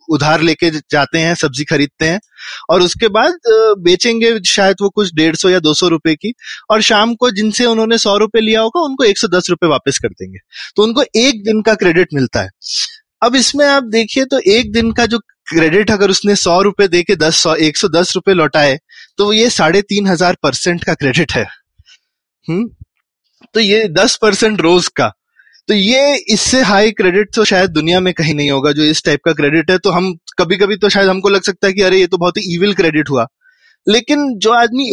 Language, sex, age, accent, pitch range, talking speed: Hindi, male, 20-39, native, 160-220 Hz, 200 wpm